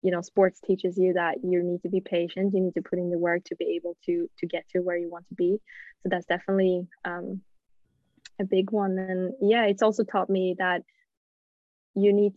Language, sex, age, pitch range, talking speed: English, female, 20-39, 180-200 Hz, 225 wpm